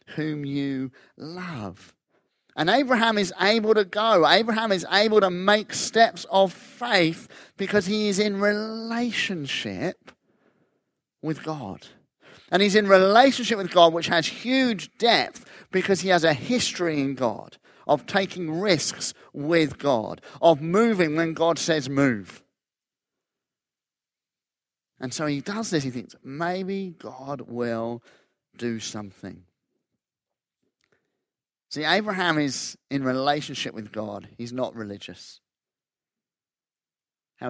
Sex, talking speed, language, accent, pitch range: male, 120 wpm, English, British, 135-200 Hz